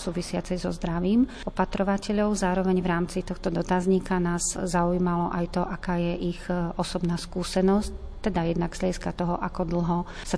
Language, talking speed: Slovak, 145 wpm